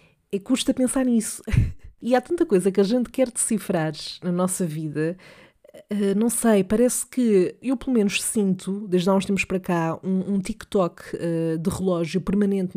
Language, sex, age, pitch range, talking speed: Portuguese, female, 20-39, 175-215 Hz, 180 wpm